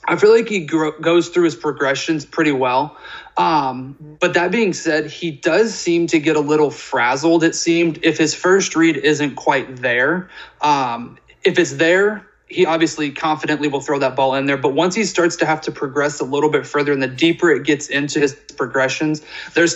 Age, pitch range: 30-49, 140-170 Hz